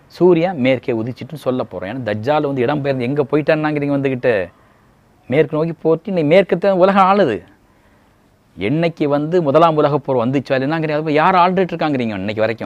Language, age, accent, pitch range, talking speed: Tamil, 30-49, native, 105-155 Hz, 145 wpm